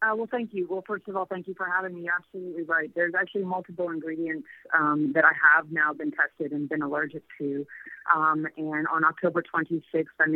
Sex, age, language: female, 30-49, English